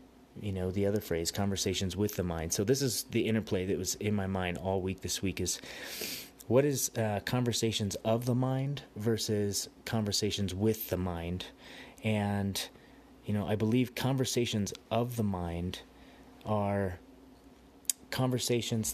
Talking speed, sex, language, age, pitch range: 150 wpm, male, English, 30-49, 90-110 Hz